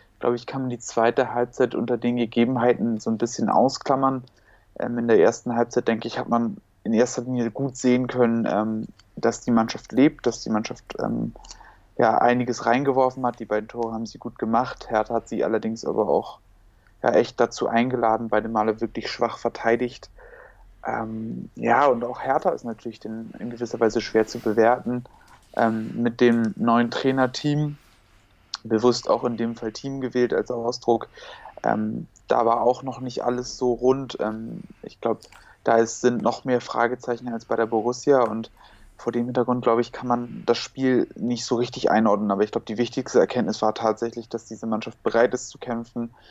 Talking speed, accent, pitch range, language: 180 wpm, German, 115-125 Hz, German